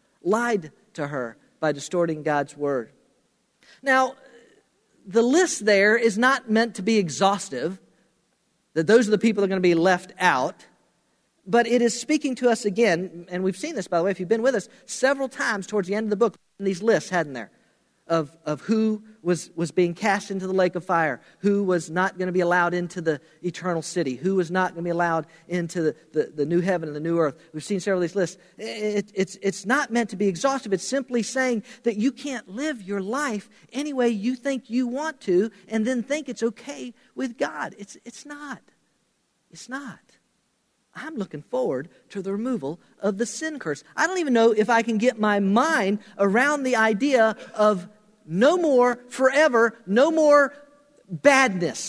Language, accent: English, American